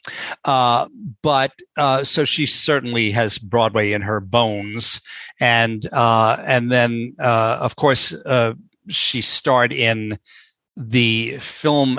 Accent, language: American, English